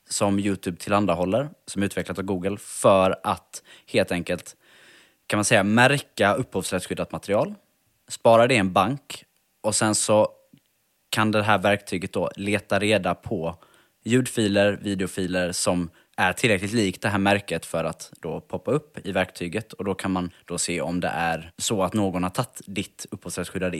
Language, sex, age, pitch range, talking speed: Swedish, male, 20-39, 90-115 Hz, 165 wpm